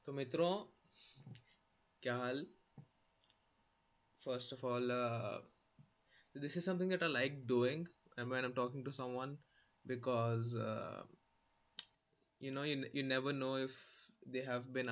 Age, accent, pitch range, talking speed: 20-39, native, 115-135 Hz, 135 wpm